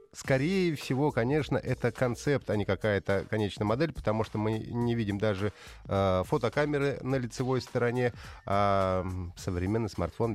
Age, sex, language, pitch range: 30-49, male, Russian, 95-125 Hz